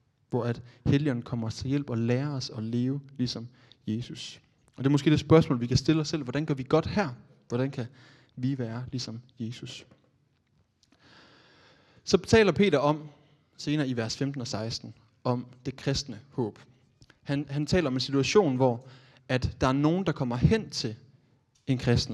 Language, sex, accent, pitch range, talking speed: Danish, male, native, 125-145 Hz, 180 wpm